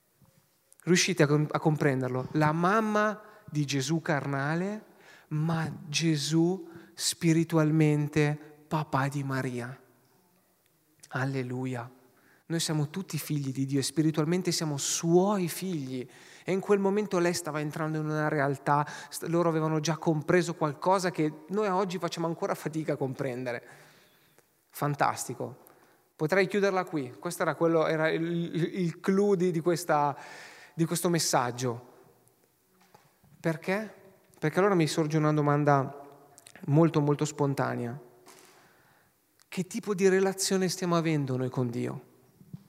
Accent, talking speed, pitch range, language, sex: native, 120 wpm, 150-175 Hz, Italian, male